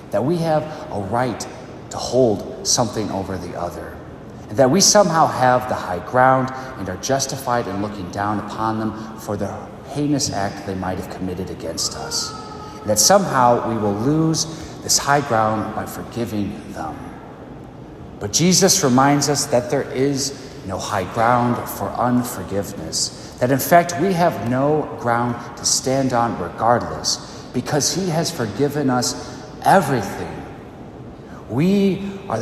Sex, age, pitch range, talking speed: male, 40-59, 105-145 Hz, 150 wpm